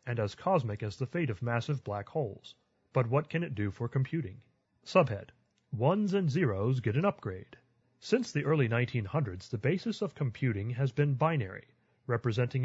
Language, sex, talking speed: English, male, 170 wpm